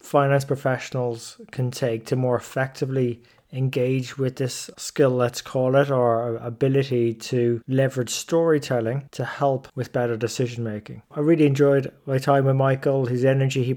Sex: male